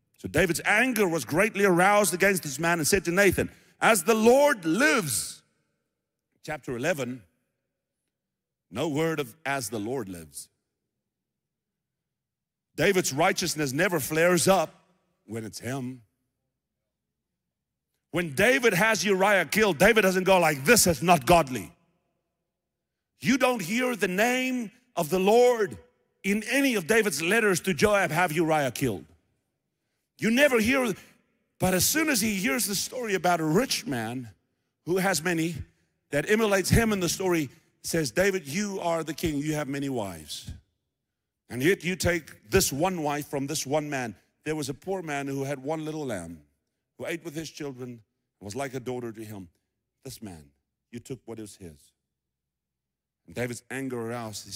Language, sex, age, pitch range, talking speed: English, male, 50-69, 125-190 Hz, 160 wpm